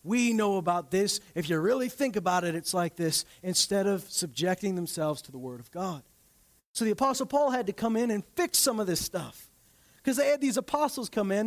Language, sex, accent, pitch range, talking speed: English, male, American, 175-245 Hz, 225 wpm